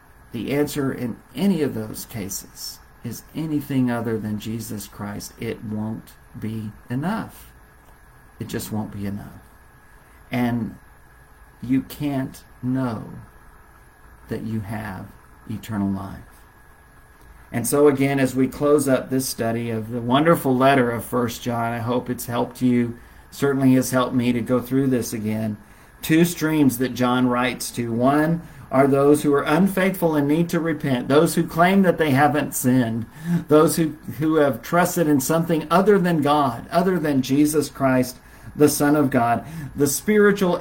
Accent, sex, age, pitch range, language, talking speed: American, male, 50-69, 120-150 Hz, English, 155 wpm